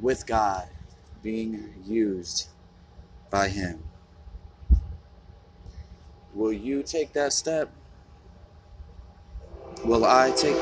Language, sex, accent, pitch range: English, male, American, 80-120 Hz